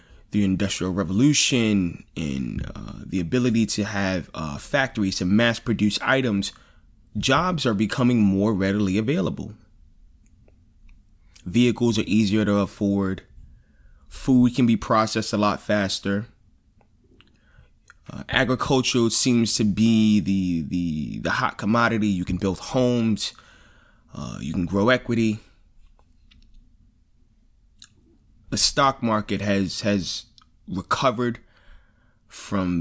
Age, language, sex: 20-39, English, male